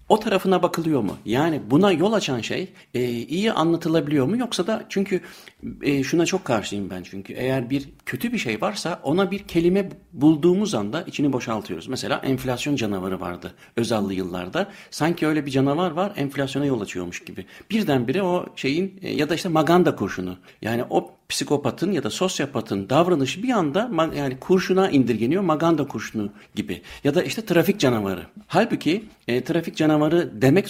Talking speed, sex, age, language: 160 wpm, male, 60-79, Turkish